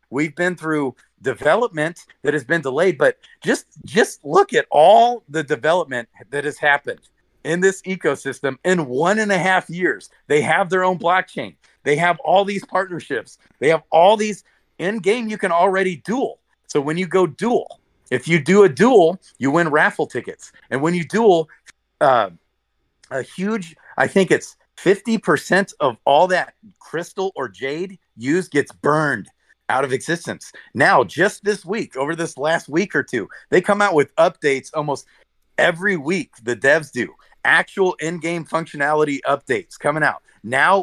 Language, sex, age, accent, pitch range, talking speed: English, male, 40-59, American, 145-185 Hz, 165 wpm